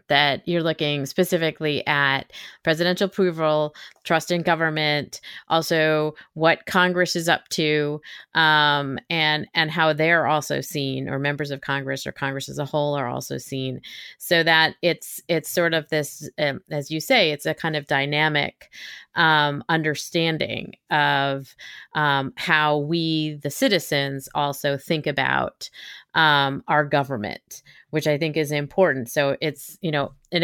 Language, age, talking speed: English, 30-49, 150 wpm